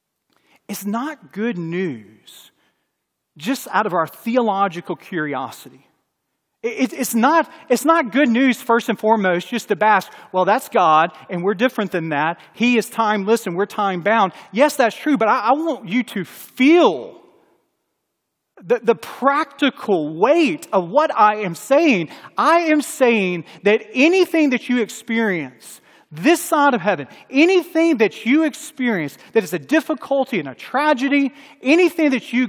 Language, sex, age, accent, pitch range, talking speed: English, male, 40-59, American, 195-285 Hz, 150 wpm